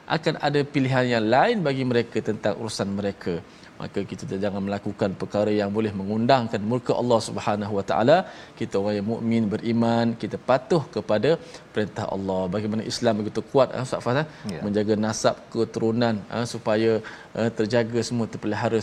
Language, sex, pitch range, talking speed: Malayalam, male, 110-135 Hz, 145 wpm